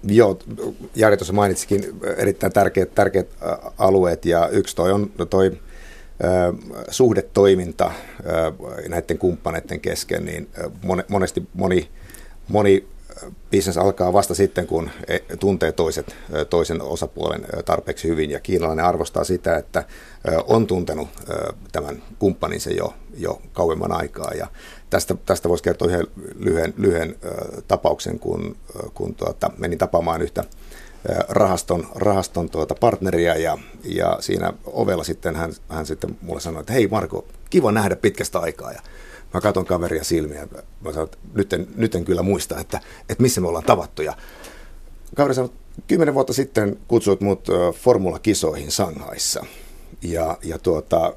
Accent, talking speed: native, 135 wpm